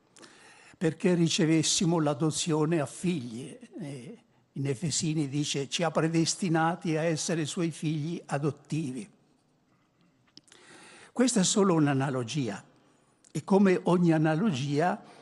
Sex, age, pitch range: male, 60-79, 145-180 Hz